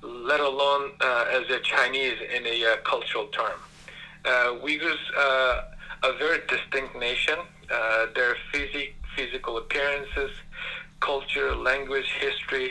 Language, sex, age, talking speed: English, male, 50-69, 120 wpm